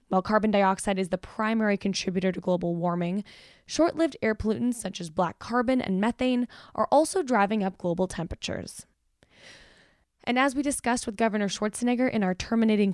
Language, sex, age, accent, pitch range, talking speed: English, female, 10-29, American, 185-250 Hz, 160 wpm